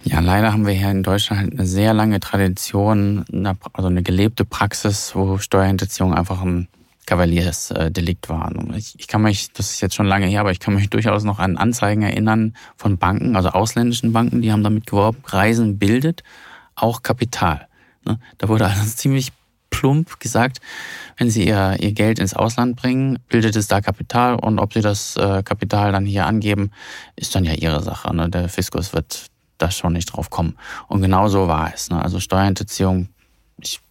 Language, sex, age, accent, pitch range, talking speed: German, male, 20-39, German, 95-110 Hz, 175 wpm